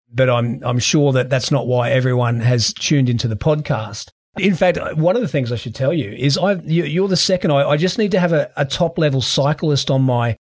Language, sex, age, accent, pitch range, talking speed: English, male, 30-49, Australian, 130-150 Hz, 230 wpm